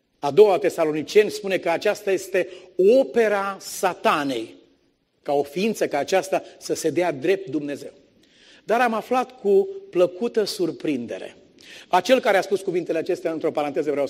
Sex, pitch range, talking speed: male, 180-280 Hz, 145 wpm